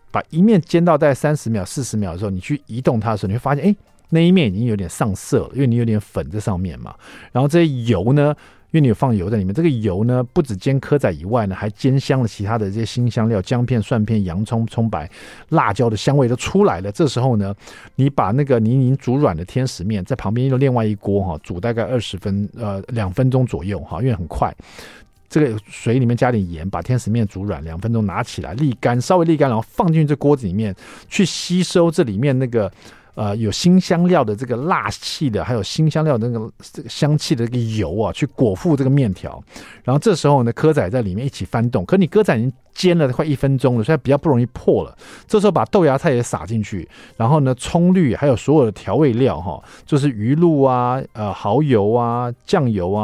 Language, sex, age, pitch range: Chinese, male, 50-69, 105-150 Hz